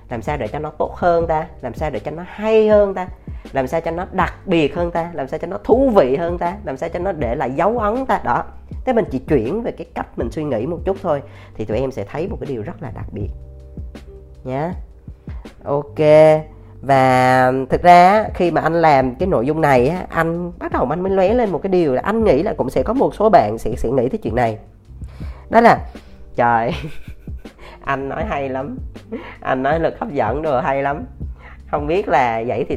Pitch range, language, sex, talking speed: 110-175 Hz, Vietnamese, female, 235 wpm